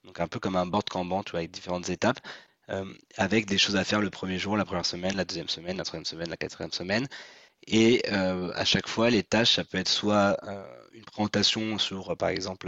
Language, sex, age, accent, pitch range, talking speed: French, male, 20-39, French, 95-105 Hz, 235 wpm